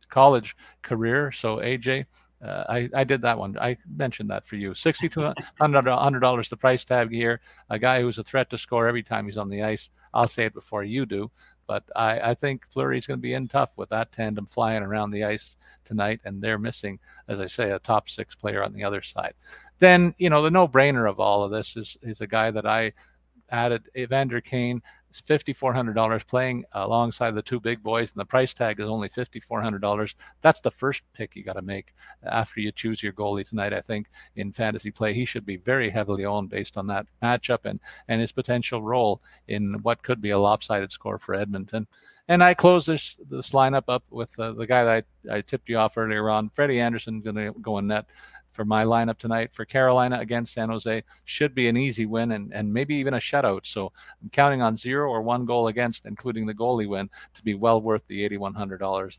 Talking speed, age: 225 wpm, 50-69